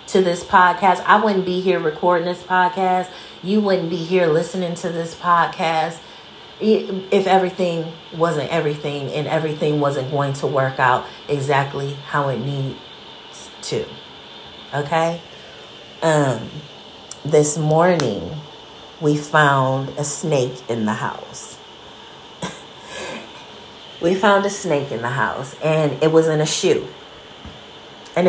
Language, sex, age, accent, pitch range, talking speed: English, female, 30-49, American, 130-175 Hz, 125 wpm